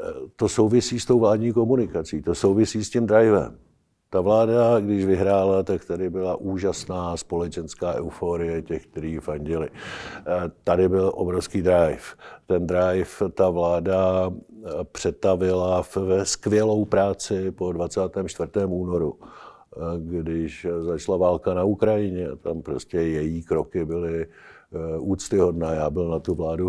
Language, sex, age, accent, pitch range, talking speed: Czech, male, 50-69, native, 85-110 Hz, 125 wpm